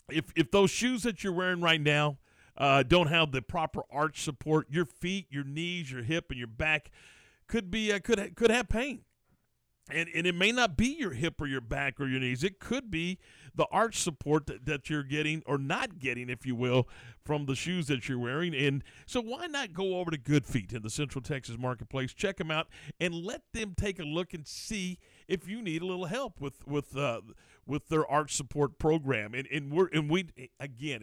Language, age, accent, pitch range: English, 50-69, American, 135-180 Hz